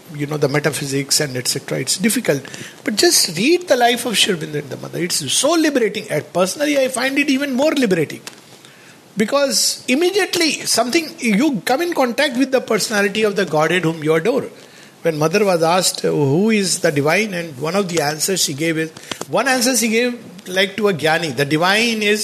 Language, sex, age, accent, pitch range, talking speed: English, male, 50-69, Indian, 165-245 Hz, 190 wpm